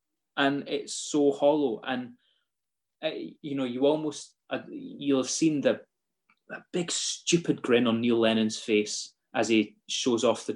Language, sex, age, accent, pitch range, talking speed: English, male, 20-39, British, 115-150 Hz, 150 wpm